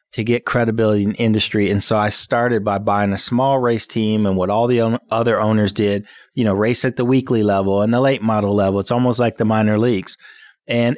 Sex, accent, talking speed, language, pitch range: male, American, 225 wpm, English, 110-130 Hz